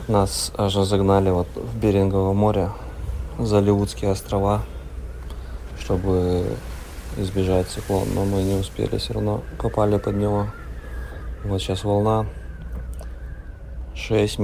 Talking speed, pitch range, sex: 110 wpm, 85-100 Hz, male